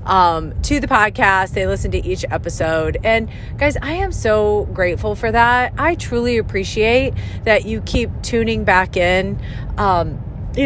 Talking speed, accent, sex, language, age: 160 wpm, American, female, English, 30-49